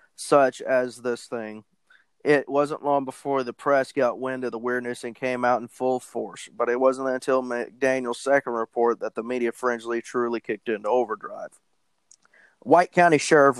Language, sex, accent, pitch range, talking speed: English, male, American, 120-140 Hz, 170 wpm